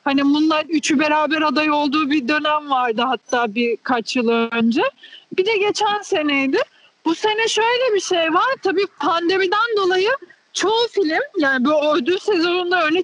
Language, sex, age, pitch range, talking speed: Turkish, female, 40-59, 305-390 Hz, 150 wpm